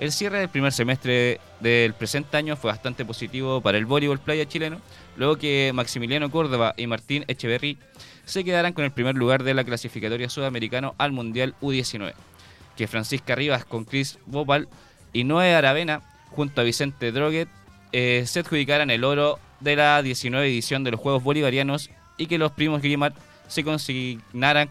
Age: 20-39